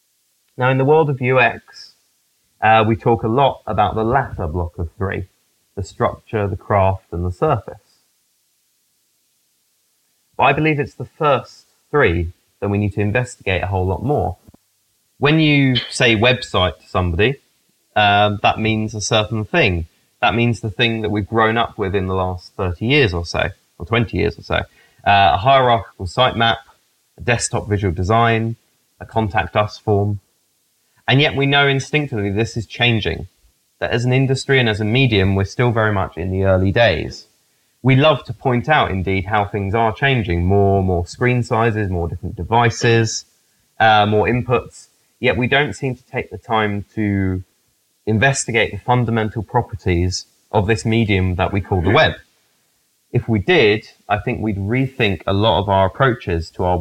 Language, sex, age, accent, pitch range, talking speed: English, male, 30-49, British, 95-120 Hz, 175 wpm